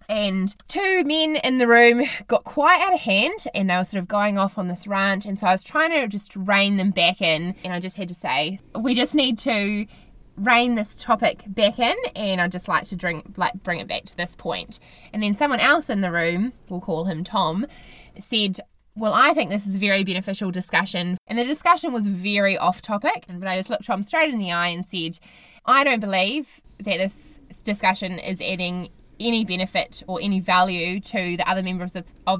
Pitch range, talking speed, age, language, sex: 185-235 Hz, 220 wpm, 20-39, English, female